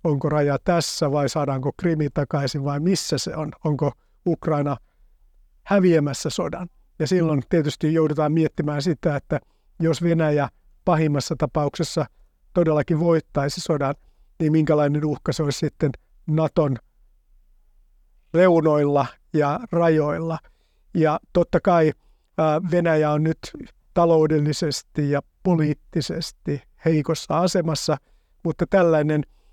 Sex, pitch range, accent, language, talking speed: male, 145-165 Hz, native, Finnish, 105 wpm